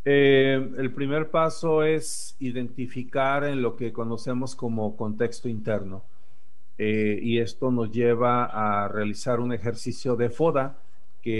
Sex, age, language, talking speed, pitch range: male, 40-59, Spanish, 130 wpm, 110-130 Hz